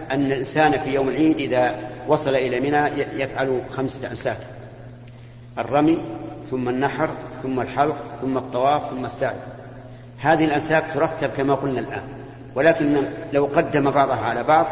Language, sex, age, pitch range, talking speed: Arabic, male, 50-69, 125-145 Hz, 135 wpm